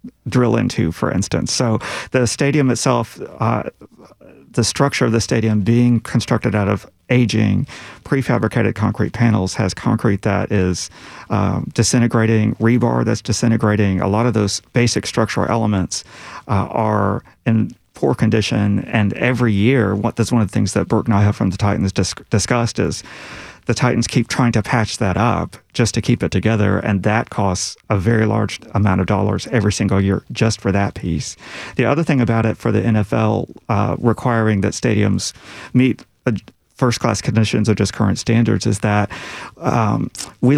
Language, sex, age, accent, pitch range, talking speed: English, male, 40-59, American, 100-120 Hz, 165 wpm